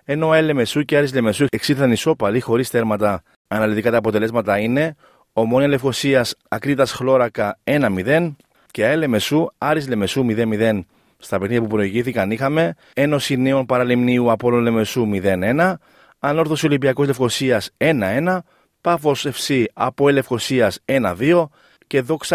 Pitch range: 110-145 Hz